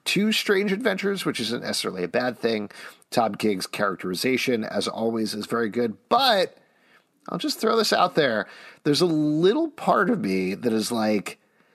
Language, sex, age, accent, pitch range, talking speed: English, male, 40-59, American, 110-155 Hz, 170 wpm